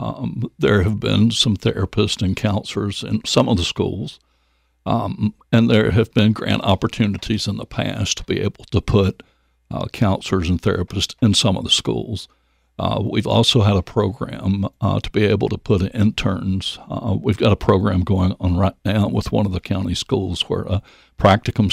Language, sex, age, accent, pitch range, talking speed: English, male, 60-79, American, 95-110 Hz, 190 wpm